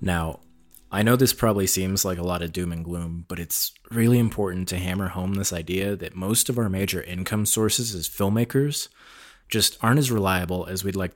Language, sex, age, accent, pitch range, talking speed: English, male, 20-39, American, 90-115 Hz, 205 wpm